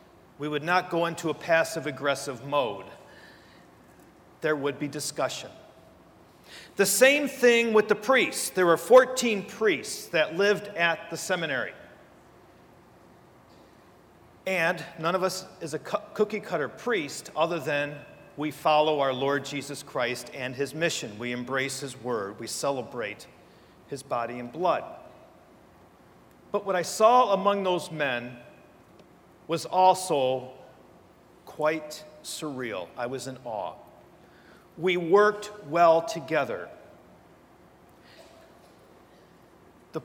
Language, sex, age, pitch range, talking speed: English, male, 40-59, 145-200 Hz, 115 wpm